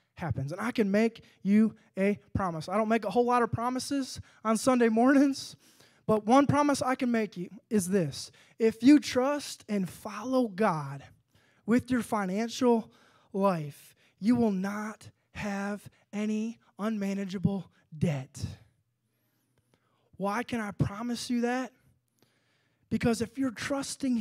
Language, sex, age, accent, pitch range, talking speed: English, male, 20-39, American, 165-230 Hz, 135 wpm